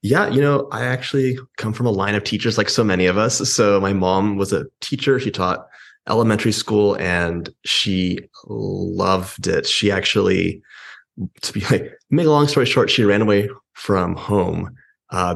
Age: 20-39